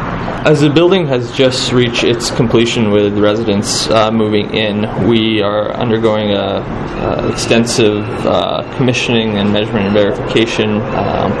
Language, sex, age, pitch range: English, male, 20-39, 105-125 Hz